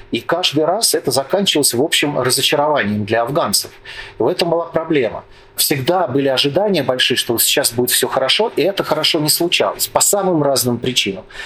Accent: native